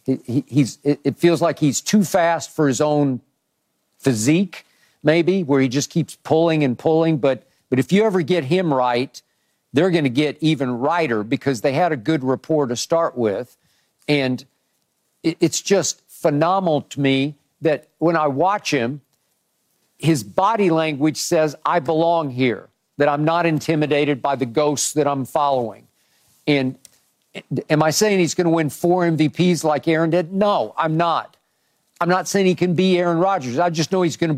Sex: male